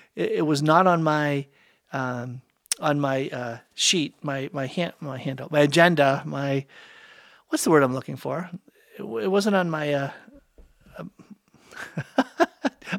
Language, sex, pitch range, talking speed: English, male, 150-220 Hz, 145 wpm